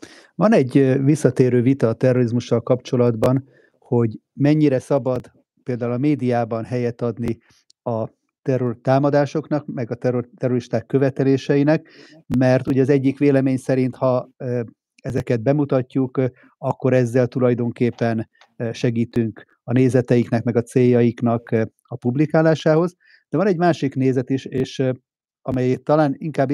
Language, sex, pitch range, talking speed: Hungarian, male, 120-135 Hz, 120 wpm